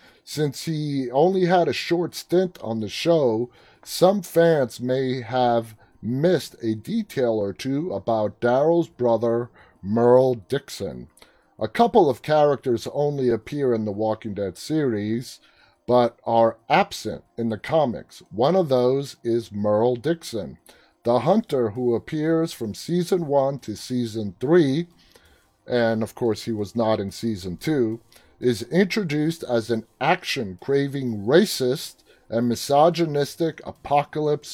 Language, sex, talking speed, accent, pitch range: English, male, 130 wpm, American, 110-145 Hz